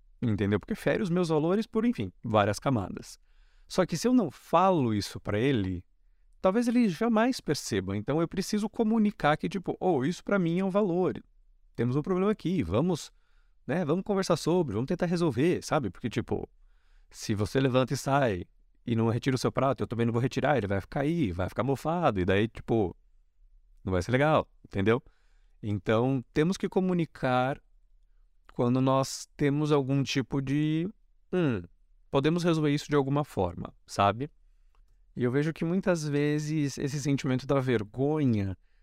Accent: Brazilian